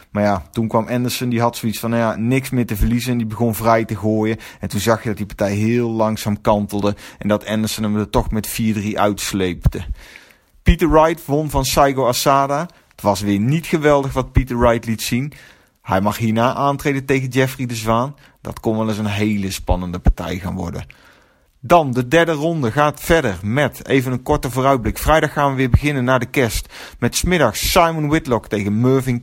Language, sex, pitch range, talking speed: Dutch, male, 105-135 Hz, 205 wpm